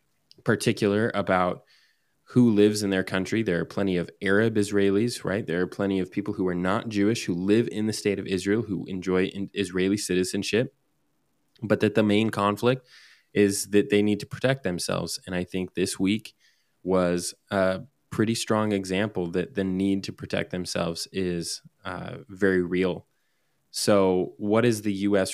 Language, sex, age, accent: English, male, 20-39, American